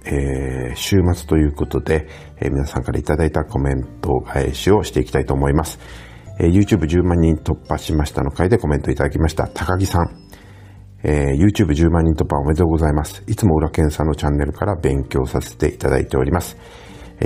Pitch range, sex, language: 75-95 Hz, male, Japanese